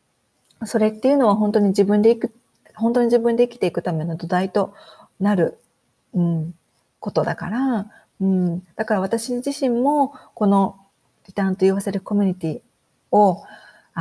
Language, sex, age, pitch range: Japanese, female, 40-59, 175-225 Hz